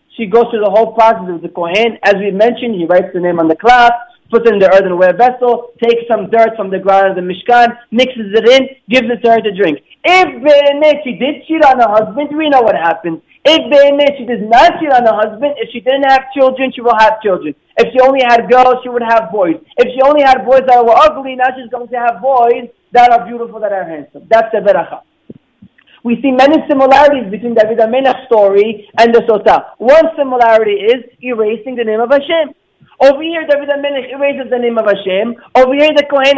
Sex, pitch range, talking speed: male, 225-285 Hz, 225 wpm